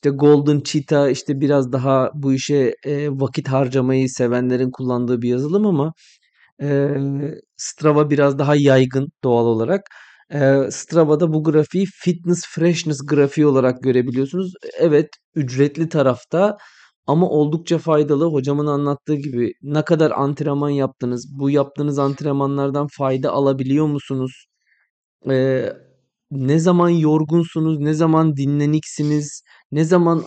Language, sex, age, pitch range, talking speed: Turkish, male, 30-49, 135-155 Hz, 120 wpm